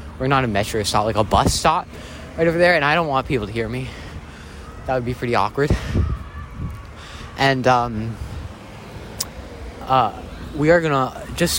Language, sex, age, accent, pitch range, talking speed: English, male, 20-39, American, 80-125 Hz, 165 wpm